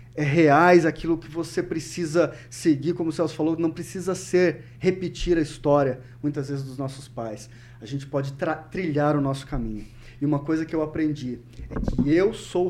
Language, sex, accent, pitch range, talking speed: Portuguese, male, Brazilian, 125-175 Hz, 190 wpm